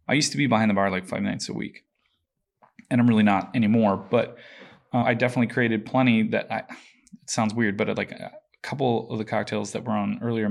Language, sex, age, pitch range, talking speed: English, male, 20-39, 105-120 Hz, 225 wpm